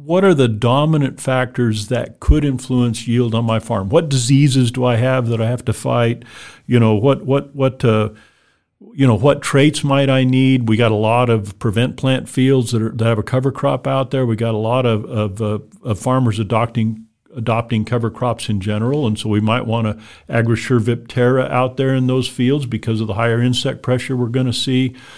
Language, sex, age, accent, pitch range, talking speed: English, male, 50-69, American, 115-140 Hz, 215 wpm